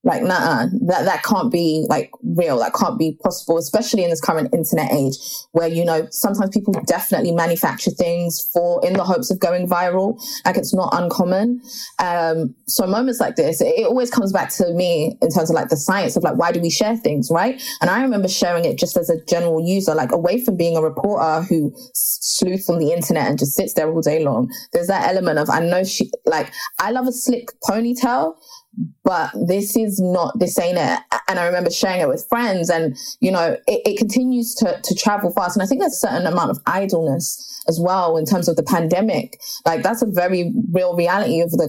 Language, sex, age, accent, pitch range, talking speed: English, female, 20-39, British, 170-235 Hz, 220 wpm